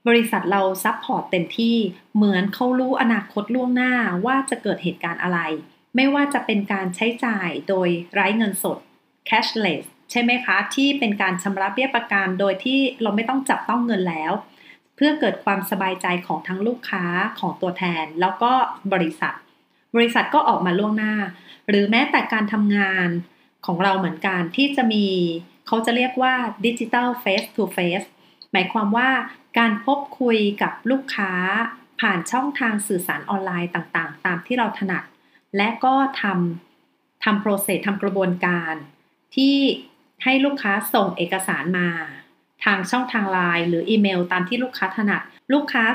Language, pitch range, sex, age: Thai, 185-235 Hz, female, 30-49